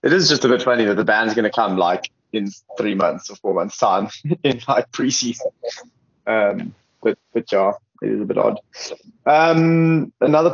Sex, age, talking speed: male, 20-39, 195 wpm